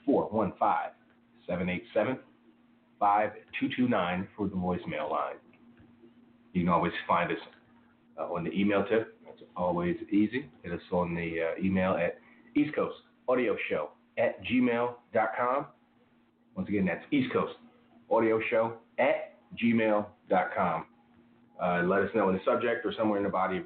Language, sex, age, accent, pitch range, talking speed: English, male, 30-49, American, 90-120 Hz, 115 wpm